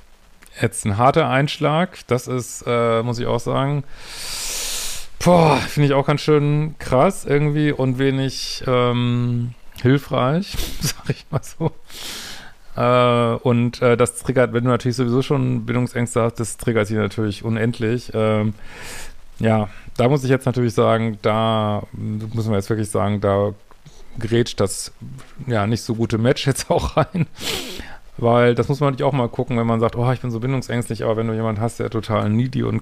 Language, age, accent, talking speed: German, 40-59, German, 175 wpm